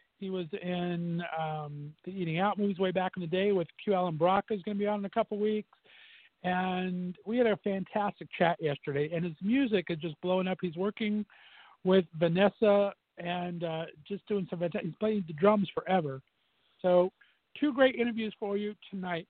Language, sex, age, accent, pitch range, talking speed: English, male, 50-69, American, 180-225 Hz, 195 wpm